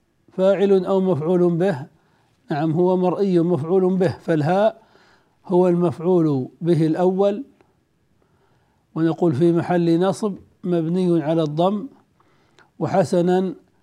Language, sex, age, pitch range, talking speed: Arabic, male, 60-79, 165-185 Hz, 95 wpm